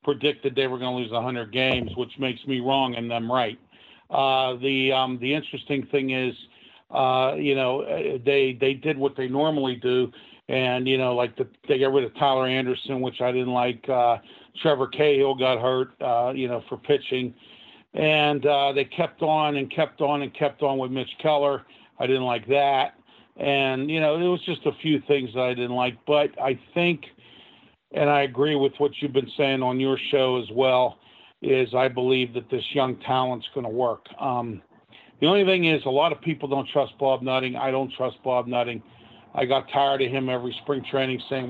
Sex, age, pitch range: male, 50-69, 125-140 Hz